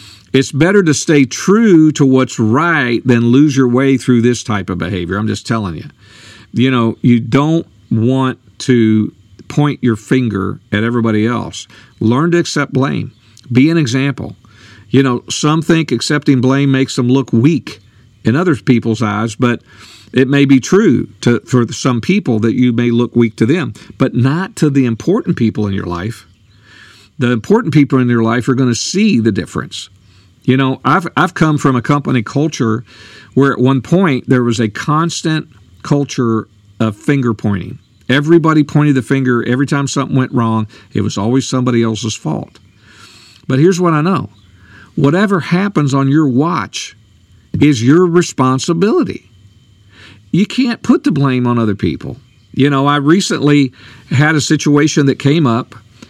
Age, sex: 50-69, male